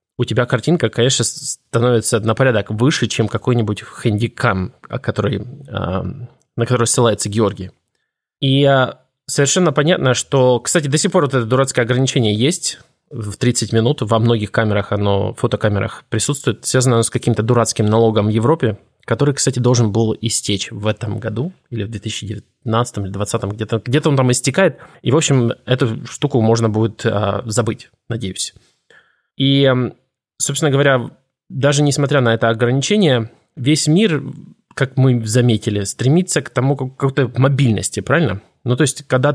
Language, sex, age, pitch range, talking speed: Russian, male, 20-39, 110-135 Hz, 145 wpm